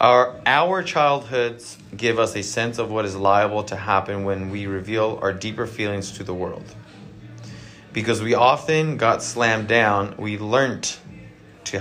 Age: 20-39